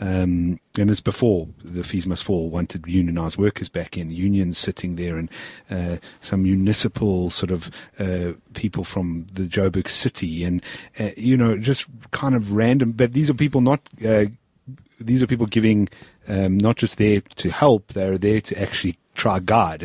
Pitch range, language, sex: 95-115 Hz, English, male